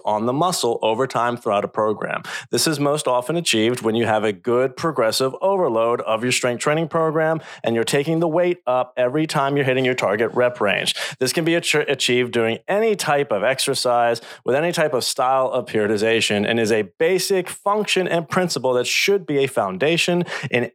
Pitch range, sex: 120-160 Hz, male